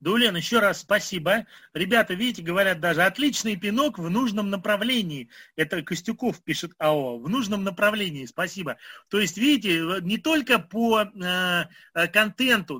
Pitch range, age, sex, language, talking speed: 180-235 Hz, 30-49, male, Russian, 140 wpm